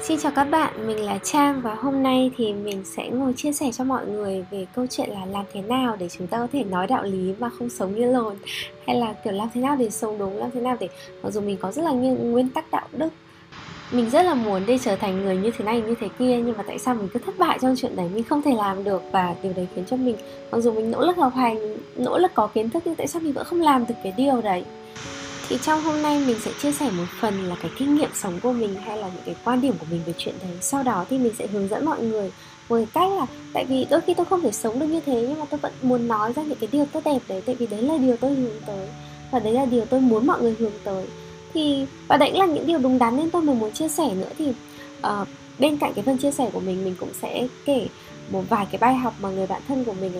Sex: female